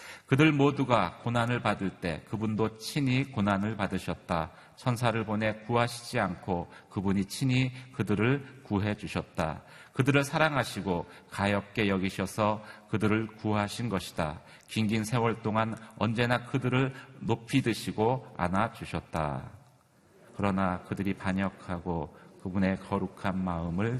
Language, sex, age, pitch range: Korean, male, 40-59, 100-125 Hz